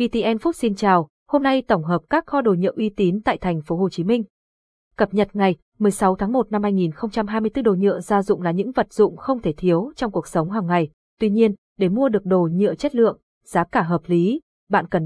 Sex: female